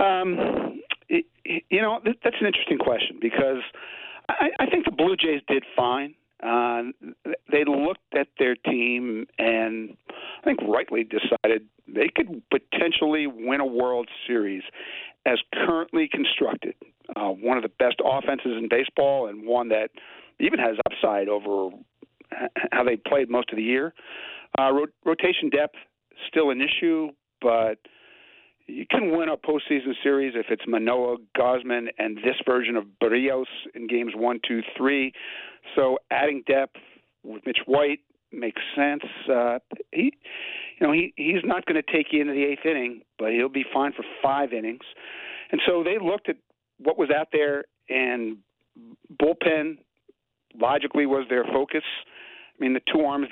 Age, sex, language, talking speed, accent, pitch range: 50-69, male, English, 150 wpm, American, 120-150 Hz